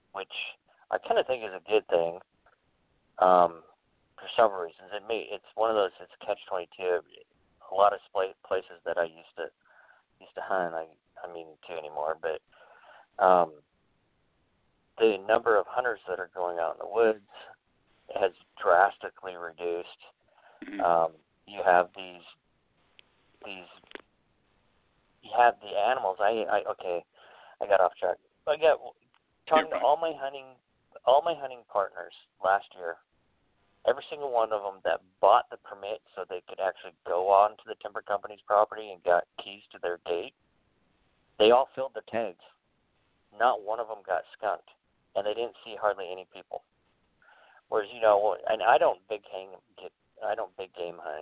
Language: English